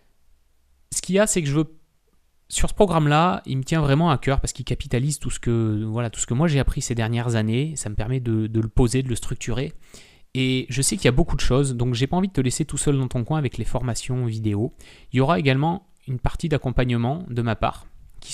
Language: French